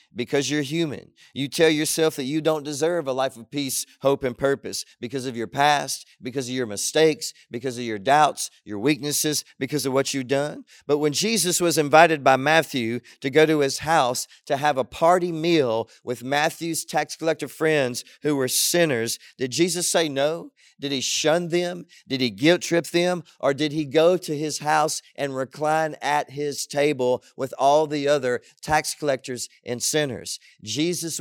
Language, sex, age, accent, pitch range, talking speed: English, male, 40-59, American, 140-180 Hz, 185 wpm